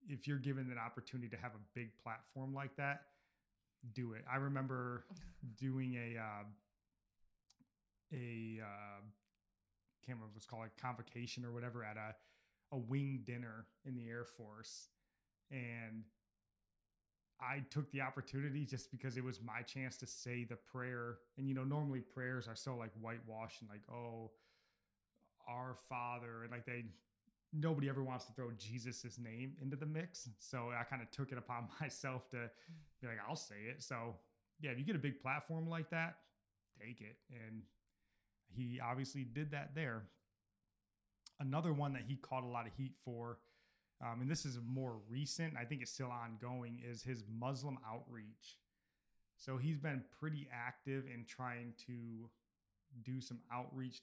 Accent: American